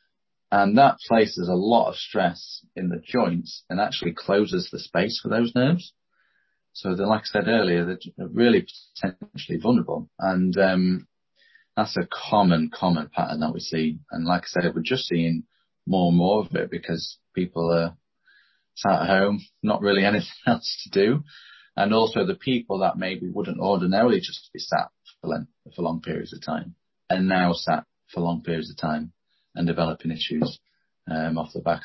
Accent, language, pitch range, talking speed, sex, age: British, English, 85-100 Hz, 175 wpm, male, 30-49